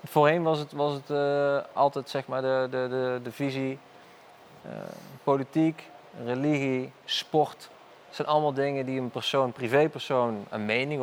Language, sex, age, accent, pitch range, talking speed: Dutch, male, 20-39, Dutch, 125-140 Hz, 160 wpm